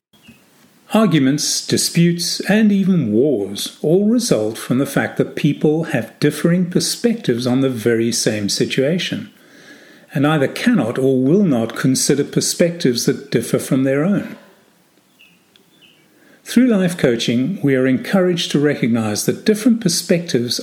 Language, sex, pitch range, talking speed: English, male, 130-190 Hz, 130 wpm